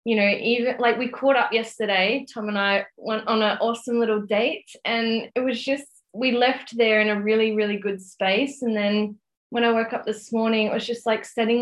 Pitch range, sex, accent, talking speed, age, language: 195-230 Hz, female, Australian, 220 wpm, 20-39, English